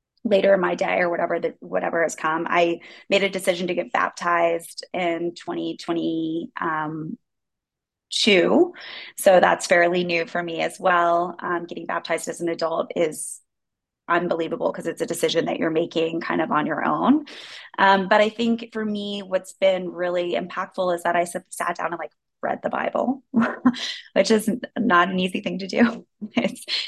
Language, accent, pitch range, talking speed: English, American, 170-220 Hz, 165 wpm